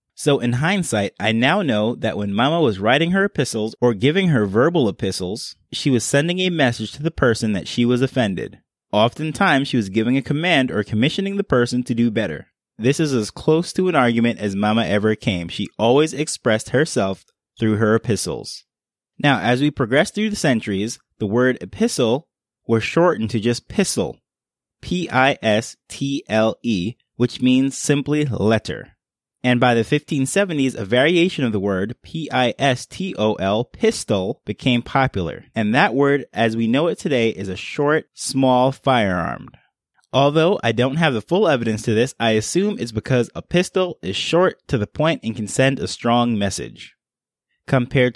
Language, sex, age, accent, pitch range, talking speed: English, male, 20-39, American, 110-150 Hz, 165 wpm